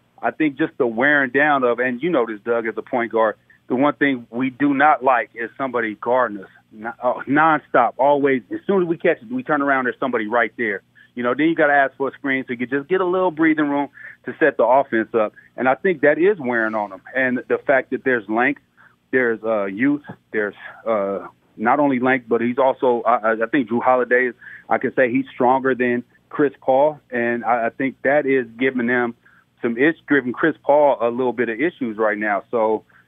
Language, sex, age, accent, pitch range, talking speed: English, male, 30-49, American, 115-140 Hz, 225 wpm